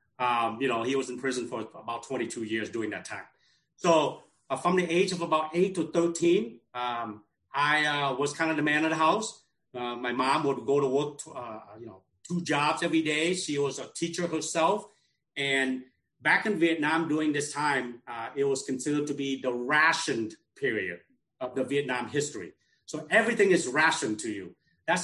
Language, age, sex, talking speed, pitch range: English, 40-59, male, 195 wpm, 125-160 Hz